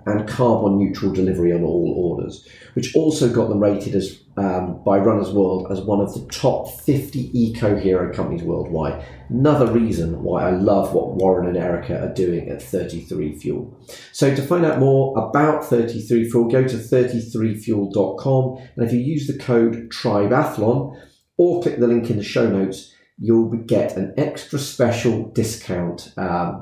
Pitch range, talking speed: 95-120 Hz, 160 wpm